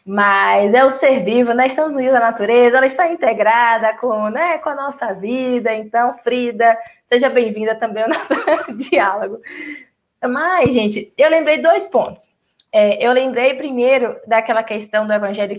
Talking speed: 160 wpm